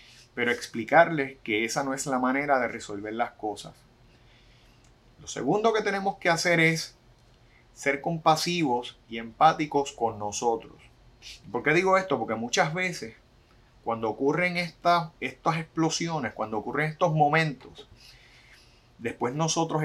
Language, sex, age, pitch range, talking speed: Spanish, male, 30-49, 120-150 Hz, 130 wpm